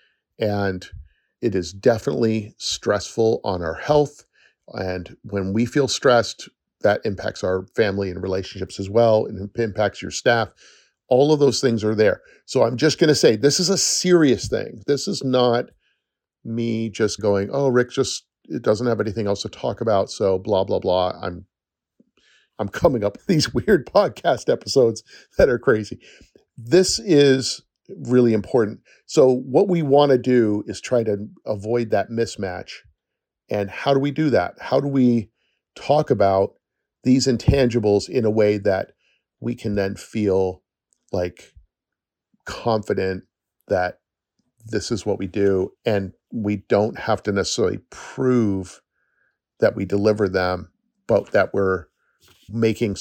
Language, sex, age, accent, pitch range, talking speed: English, male, 40-59, American, 95-125 Hz, 155 wpm